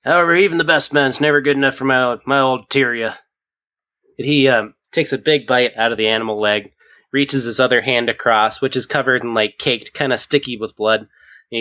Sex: male